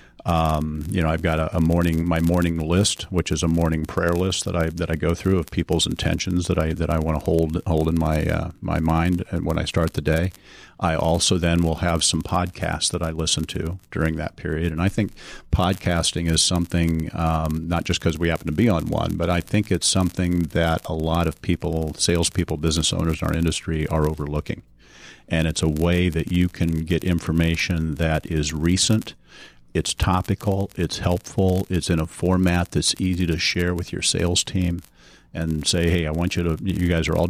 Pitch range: 80-90 Hz